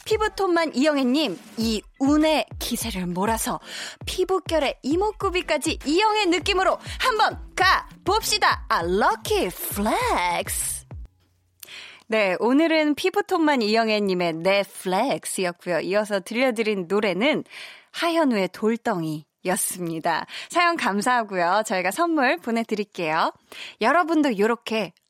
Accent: native